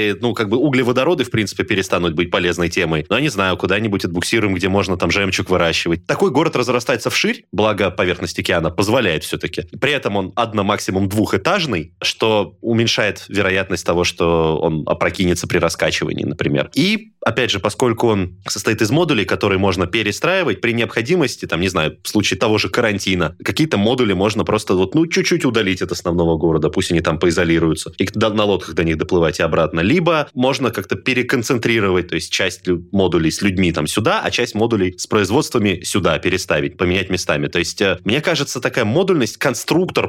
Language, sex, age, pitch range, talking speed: Russian, male, 20-39, 90-120 Hz, 175 wpm